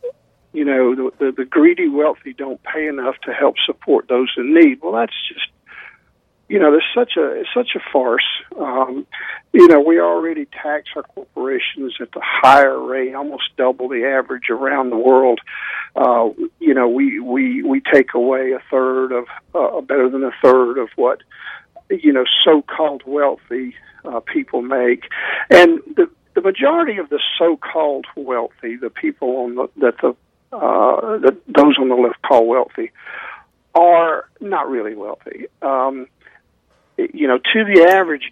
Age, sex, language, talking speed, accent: 50-69, male, English, 165 wpm, American